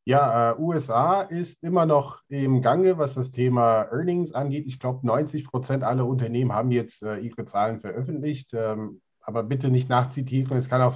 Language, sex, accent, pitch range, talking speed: German, male, German, 115-140 Hz, 180 wpm